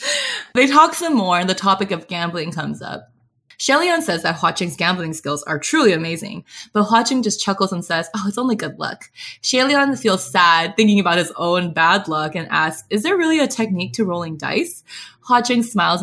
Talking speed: 200 wpm